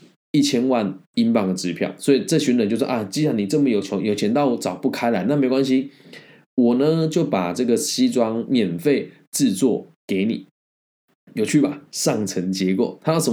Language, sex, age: Chinese, male, 20-39